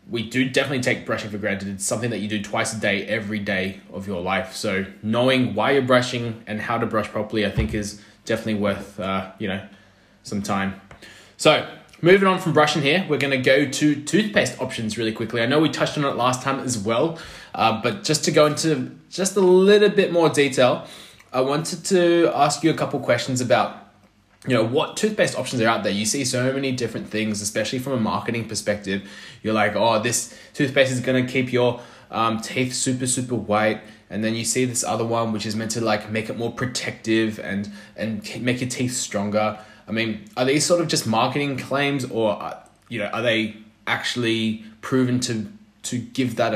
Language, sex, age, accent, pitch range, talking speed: English, male, 20-39, Australian, 105-130 Hz, 210 wpm